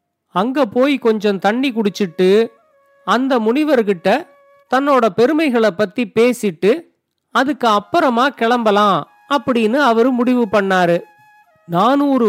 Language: Tamil